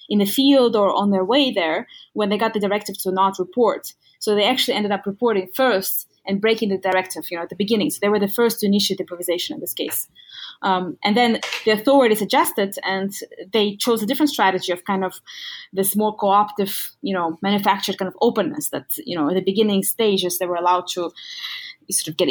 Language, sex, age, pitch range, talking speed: English, female, 20-39, 185-225 Hz, 220 wpm